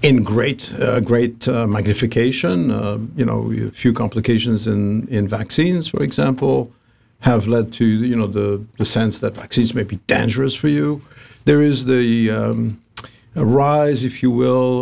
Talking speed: 160 wpm